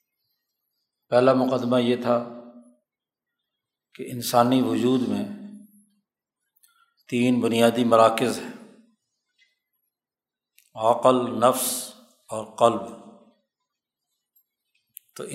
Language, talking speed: Urdu, 65 wpm